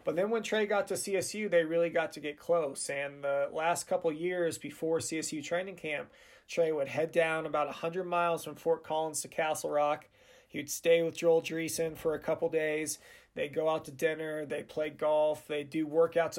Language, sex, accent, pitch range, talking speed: English, male, American, 155-180 Hz, 200 wpm